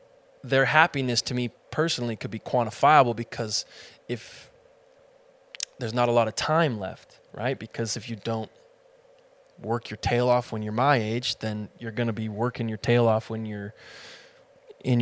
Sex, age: male, 20-39